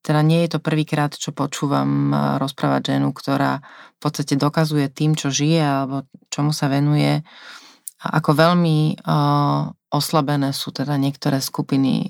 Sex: female